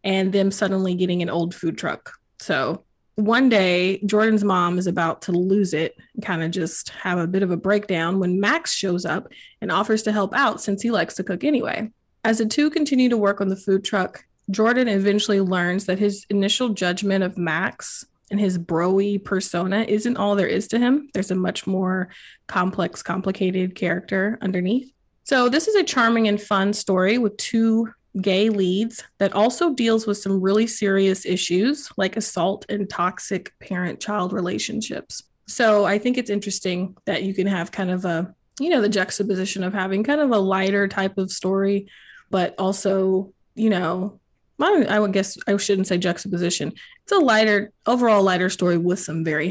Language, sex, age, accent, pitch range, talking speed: English, female, 20-39, American, 185-215 Hz, 180 wpm